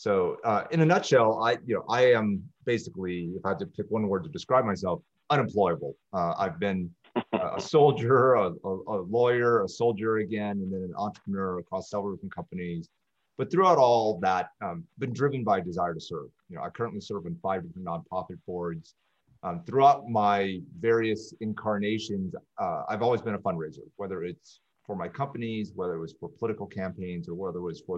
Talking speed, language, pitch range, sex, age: 195 wpm, English, 95-120 Hz, male, 30-49